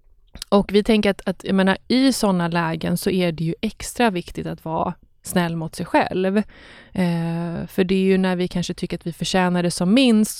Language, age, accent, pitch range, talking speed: English, 20-39, Swedish, 170-200 Hz, 215 wpm